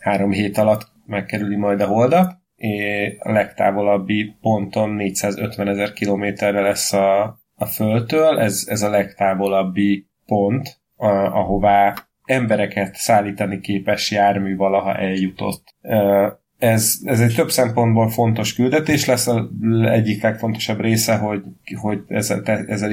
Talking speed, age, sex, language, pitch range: 125 wpm, 30-49, male, Hungarian, 100-115 Hz